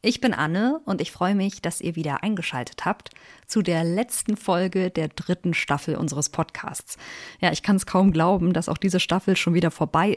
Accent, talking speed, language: German, 200 wpm, German